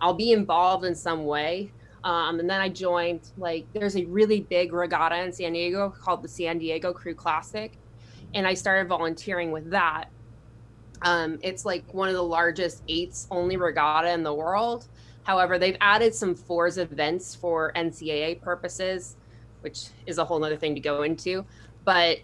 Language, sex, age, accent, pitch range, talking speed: English, female, 20-39, American, 150-185 Hz, 175 wpm